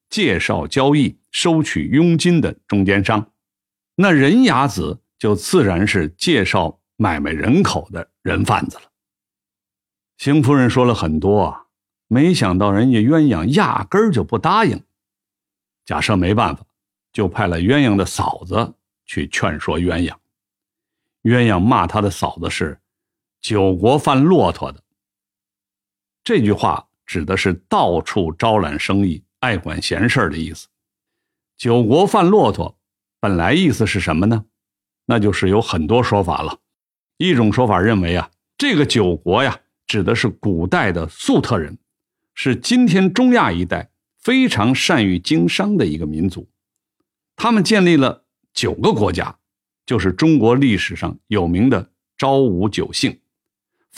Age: 50-69